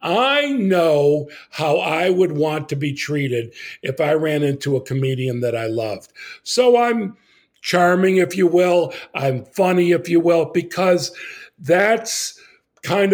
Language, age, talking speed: English, 50-69, 145 wpm